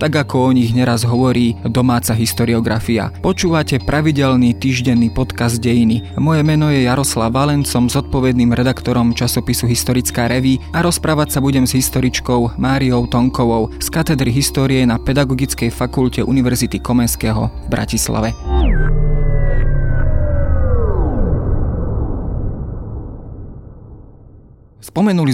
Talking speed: 100 wpm